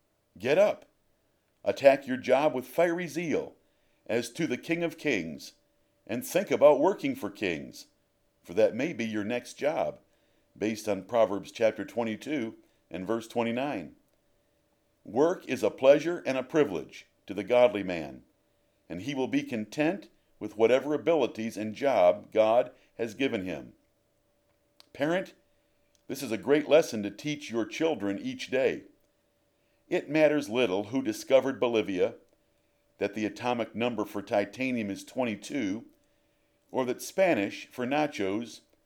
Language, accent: English, American